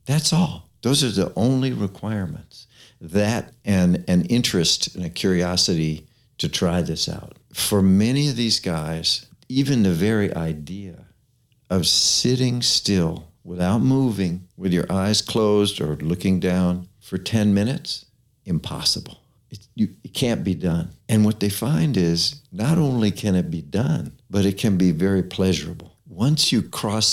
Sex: male